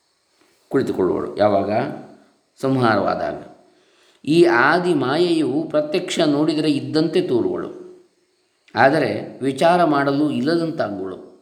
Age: 20-39